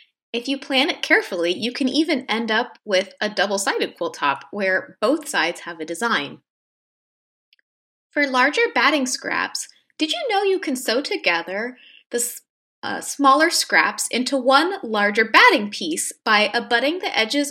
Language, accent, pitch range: English, American, 220-310 Hz